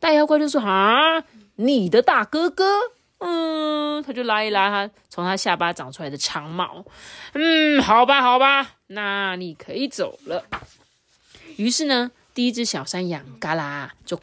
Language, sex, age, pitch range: Chinese, female, 30-49, 170-280 Hz